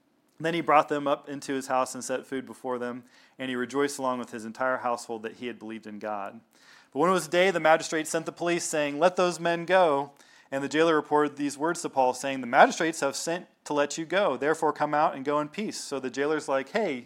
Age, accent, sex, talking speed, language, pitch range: 30-49, American, male, 250 wpm, English, 130-165 Hz